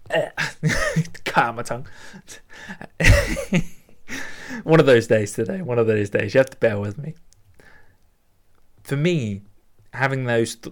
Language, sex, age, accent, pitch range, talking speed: English, male, 20-39, British, 105-145 Hz, 130 wpm